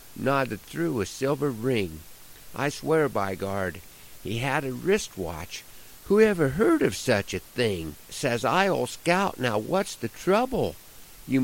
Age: 50-69